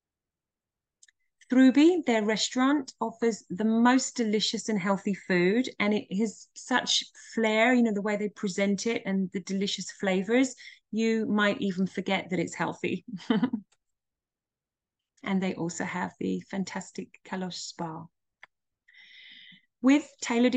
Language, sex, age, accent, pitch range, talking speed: English, female, 30-49, British, 190-245 Hz, 125 wpm